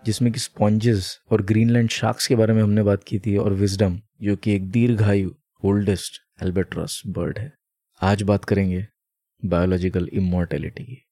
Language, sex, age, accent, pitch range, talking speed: Hindi, male, 20-39, native, 105-135 Hz, 150 wpm